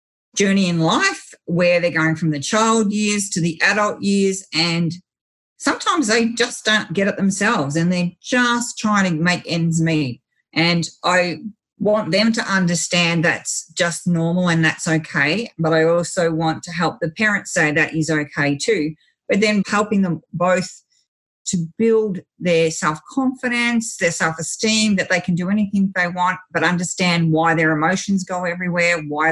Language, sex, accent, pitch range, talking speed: English, female, Australian, 160-195 Hz, 165 wpm